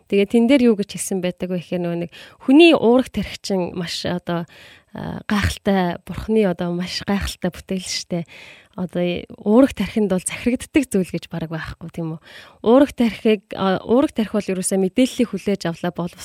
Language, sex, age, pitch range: Korean, female, 20-39, 180-240 Hz